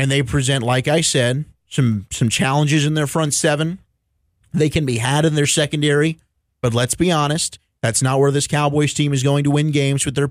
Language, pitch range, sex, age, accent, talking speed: English, 130-155 Hz, male, 30-49, American, 215 wpm